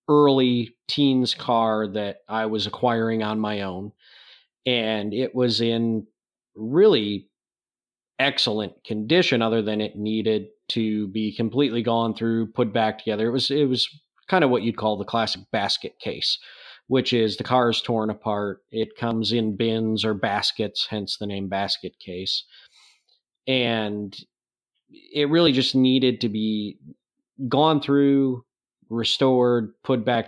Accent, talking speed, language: American, 145 wpm, English